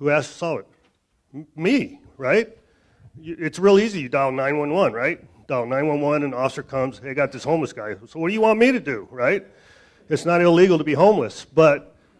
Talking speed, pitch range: 225 wpm, 115-150 Hz